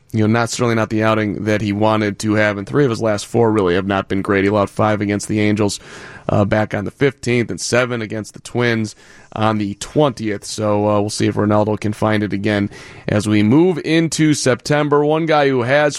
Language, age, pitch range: English, 30-49, 110-135 Hz